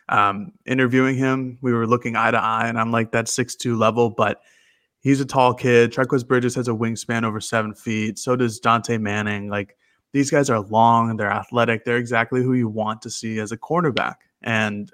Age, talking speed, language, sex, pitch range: 20-39, 205 wpm, English, male, 110-125 Hz